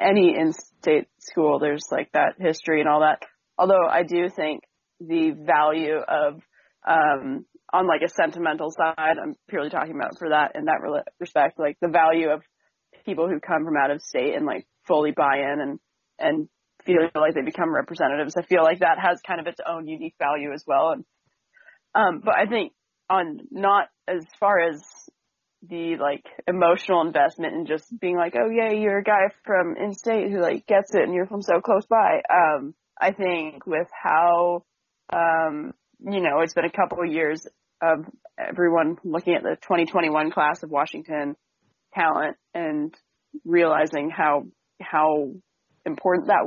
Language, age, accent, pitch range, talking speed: English, 20-39, American, 155-195 Hz, 170 wpm